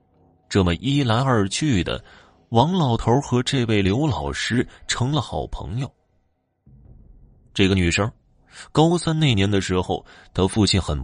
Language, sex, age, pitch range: Chinese, male, 30-49, 85-135 Hz